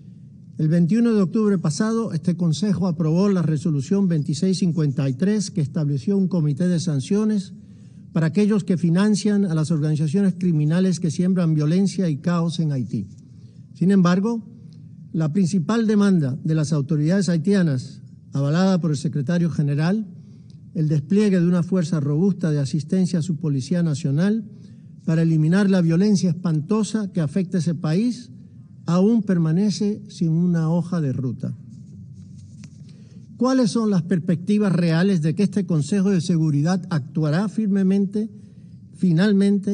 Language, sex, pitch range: Spanish, male, 160-195 Hz